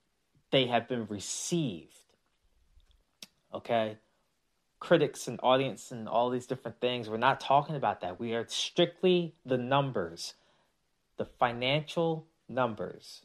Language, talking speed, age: English, 120 wpm, 20-39